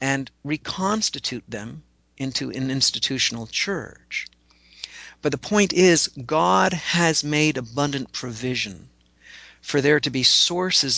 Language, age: English, 50-69